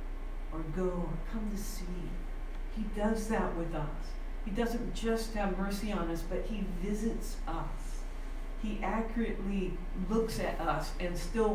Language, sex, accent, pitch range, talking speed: English, female, American, 160-195 Hz, 150 wpm